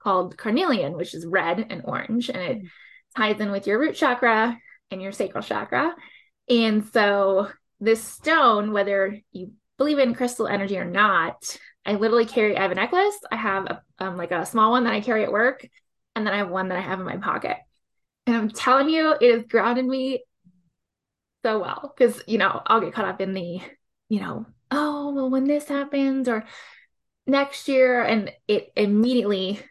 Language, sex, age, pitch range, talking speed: English, female, 20-39, 195-255 Hz, 190 wpm